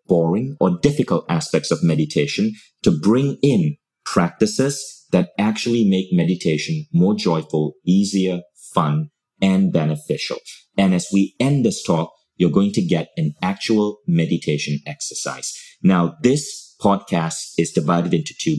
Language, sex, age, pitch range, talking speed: English, male, 40-59, 85-125 Hz, 130 wpm